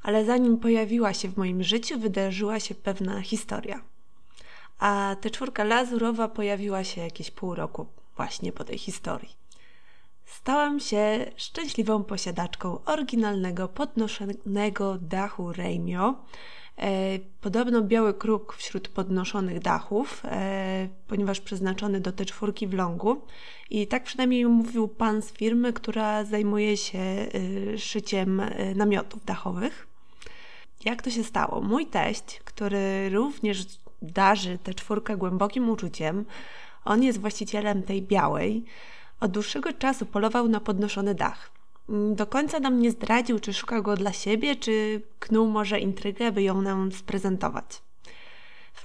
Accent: native